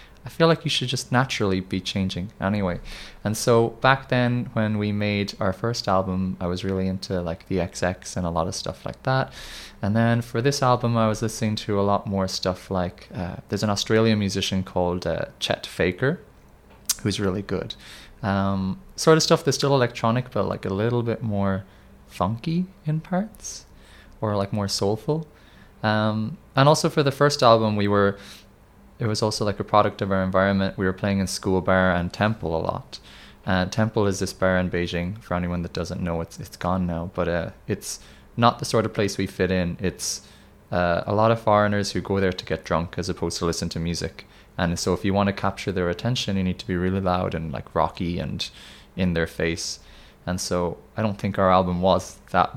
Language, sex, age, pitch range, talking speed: English, male, 20-39, 90-110 Hz, 210 wpm